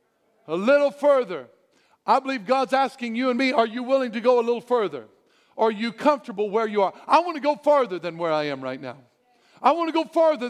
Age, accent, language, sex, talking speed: 50-69, American, English, male, 230 wpm